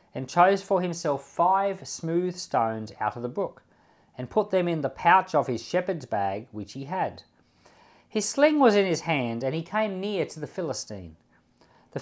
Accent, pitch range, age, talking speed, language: Australian, 125-175 Hz, 40-59, 190 wpm, English